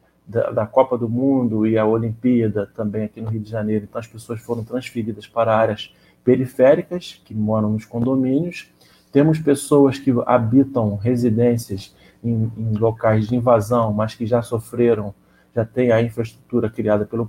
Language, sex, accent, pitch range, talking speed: Portuguese, male, Brazilian, 110-140 Hz, 155 wpm